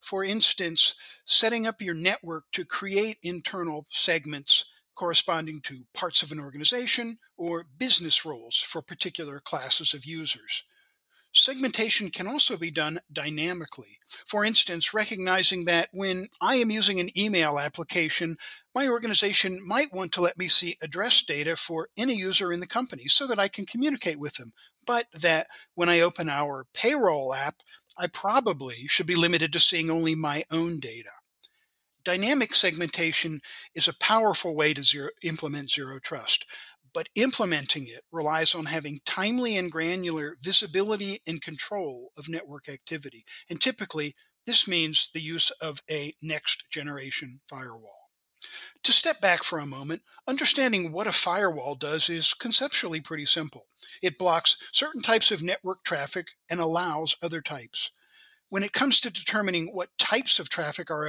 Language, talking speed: English, 150 wpm